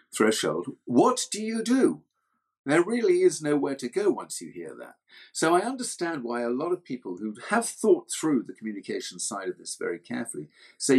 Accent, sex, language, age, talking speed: British, male, English, 50-69, 190 wpm